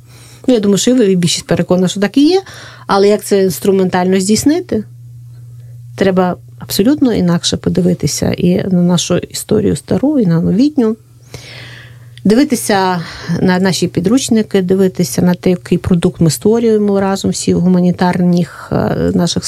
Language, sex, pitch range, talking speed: Russian, female, 155-200 Hz, 135 wpm